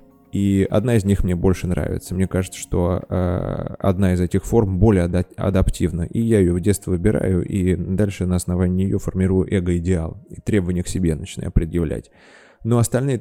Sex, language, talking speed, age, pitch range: male, Russian, 170 wpm, 20-39, 90-105 Hz